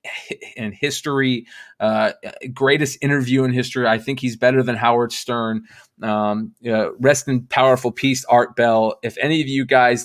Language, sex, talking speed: English, male, 160 wpm